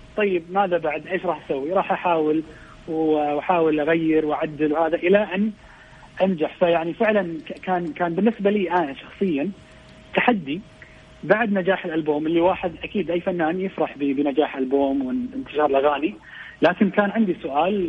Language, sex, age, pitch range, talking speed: English, male, 30-49, 140-185 Hz, 150 wpm